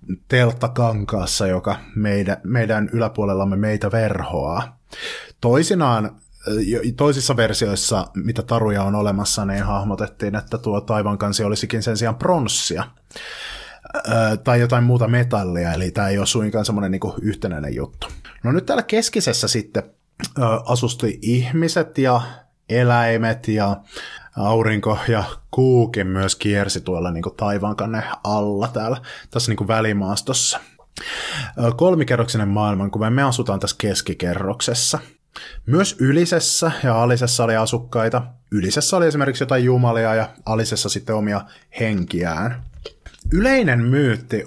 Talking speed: 110 wpm